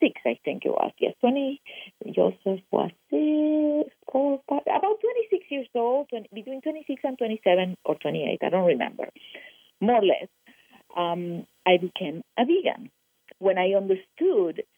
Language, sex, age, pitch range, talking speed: English, female, 50-69, 160-250 Hz, 140 wpm